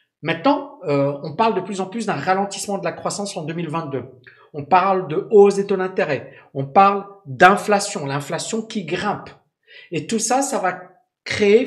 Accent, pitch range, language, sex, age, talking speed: French, 160-215 Hz, French, male, 50-69, 175 wpm